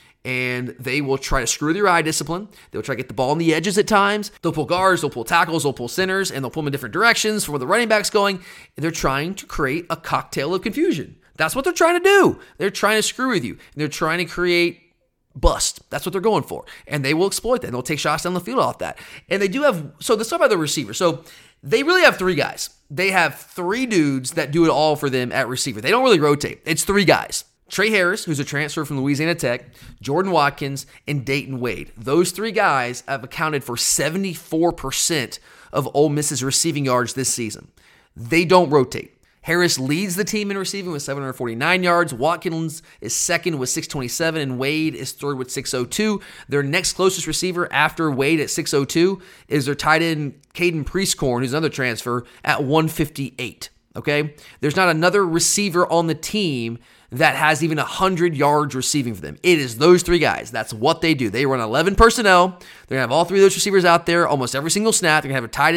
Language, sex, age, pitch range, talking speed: English, male, 30-49, 140-180 Hz, 220 wpm